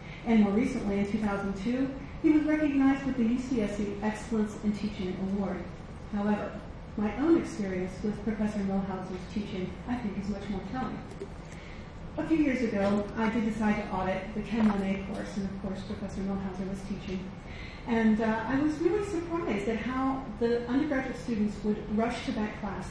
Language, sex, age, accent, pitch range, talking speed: English, female, 40-59, American, 205-250 Hz, 170 wpm